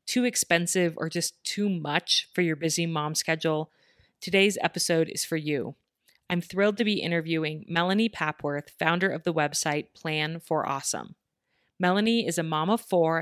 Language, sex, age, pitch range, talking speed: English, female, 30-49, 155-185 Hz, 165 wpm